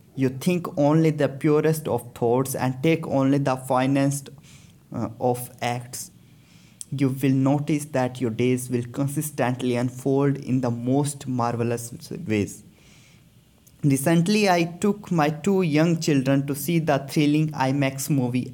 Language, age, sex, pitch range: English, 20-39, male, 125-150 Hz